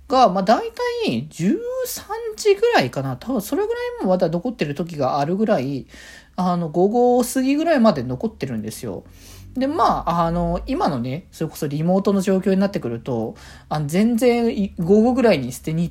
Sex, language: male, Japanese